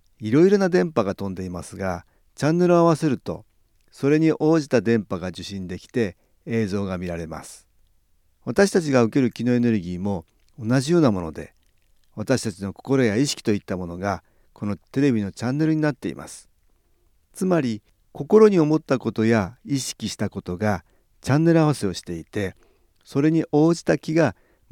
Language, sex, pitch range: Japanese, male, 95-140 Hz